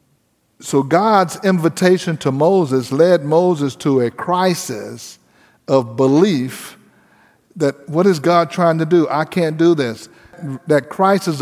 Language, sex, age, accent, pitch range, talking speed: English, male, 50-69, American, 135-180 Hz, 130 wpm